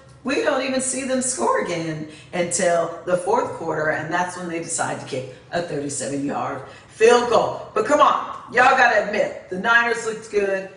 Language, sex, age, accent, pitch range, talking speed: English, female, 40-59, American, 175-240 Hz, 185 wpm